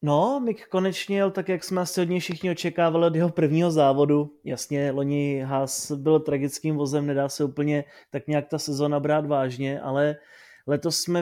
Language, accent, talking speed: Czech, native, 180 wpm